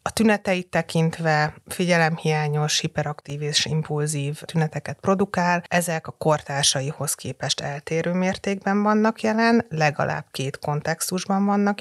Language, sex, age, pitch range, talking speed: Hungarian, female, 30-49, 150-175 Hz, 105 wpm